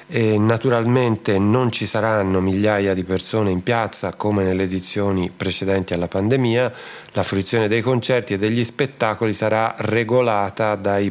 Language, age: Italian, 40-59